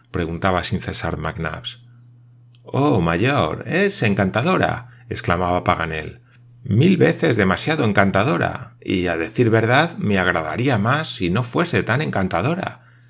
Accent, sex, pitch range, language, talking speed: Spanish, male, 95-120 Hz, Spanish, 120 wpm